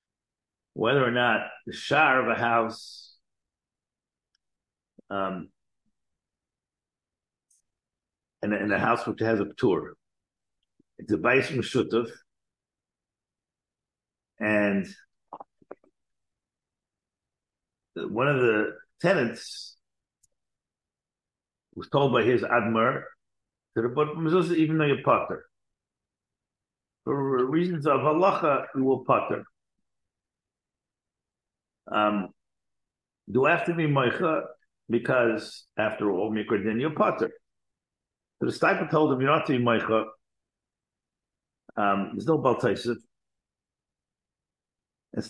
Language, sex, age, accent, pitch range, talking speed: English, male, 50-69, American, 110-150 Hz, 85 wpm